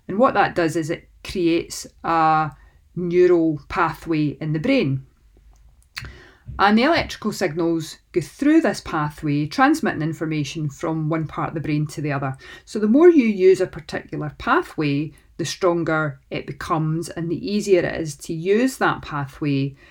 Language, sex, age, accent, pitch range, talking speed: English, female, 40-59, British, 155-190 Hz, 160 wpm